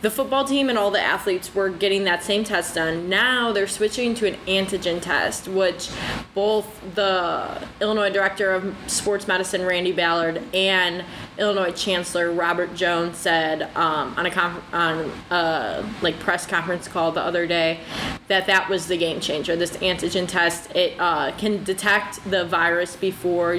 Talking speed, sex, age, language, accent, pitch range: 165 wpm, female, 20-39, English, American, 175-205 Hz